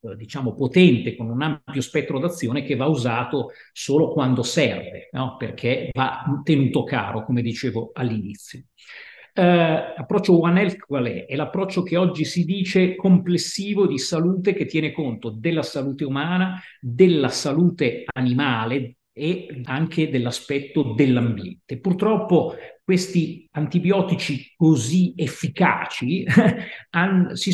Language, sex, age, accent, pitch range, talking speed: Italian, male, 50-69, native, 130-170 Hz, 115 wpm